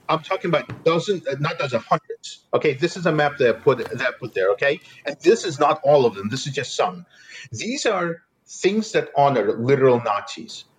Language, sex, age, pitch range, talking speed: English, male, 40-59, 135-225 Hz, 210 wpm